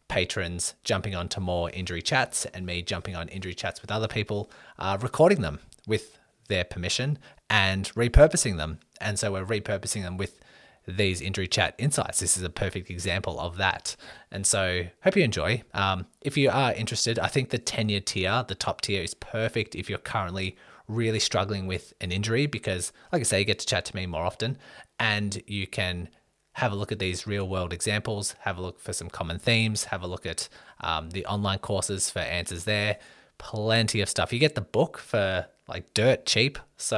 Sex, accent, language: male, Australian, English